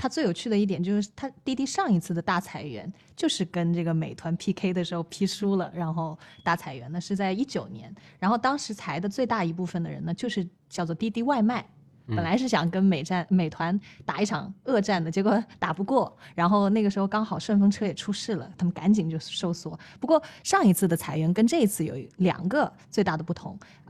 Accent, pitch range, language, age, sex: native, 170-210 Hz, Chinese, 20-39, female